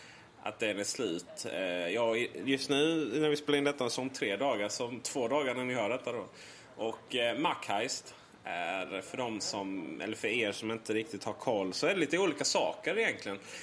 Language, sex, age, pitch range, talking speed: Swedish, male, 30-49, 110-150 Hz, 190 wpm